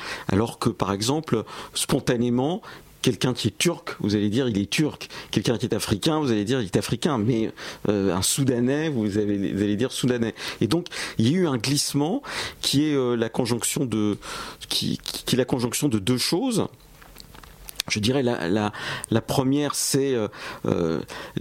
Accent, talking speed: French, 185 wpm